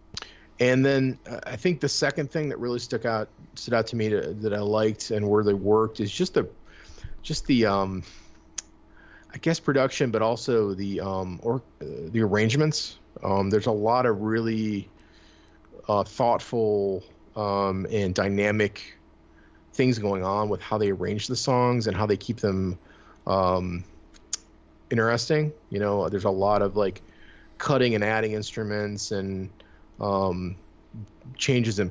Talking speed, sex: 155 wpm, male